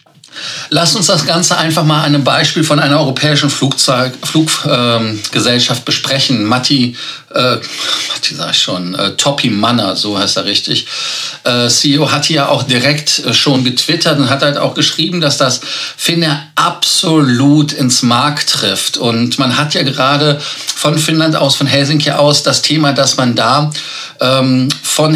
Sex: male